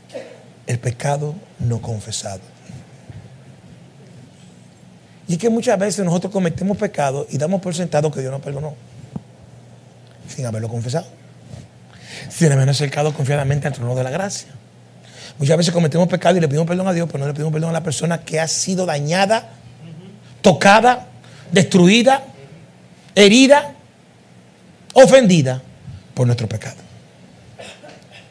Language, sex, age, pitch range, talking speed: Spanish, male, 60-79, 130-195 Hz, 130 wpm